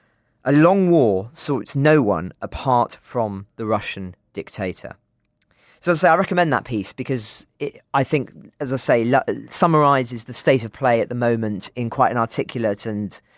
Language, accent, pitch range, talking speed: English, British, 115-140 Hz, 185 wpm